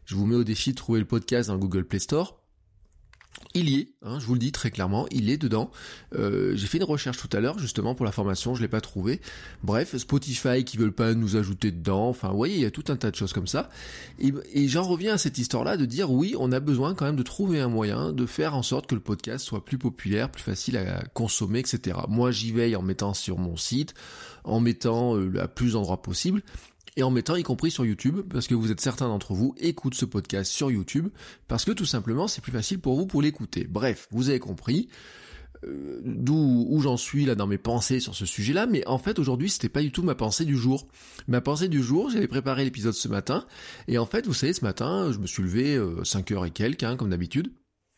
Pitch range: 105-135 Hz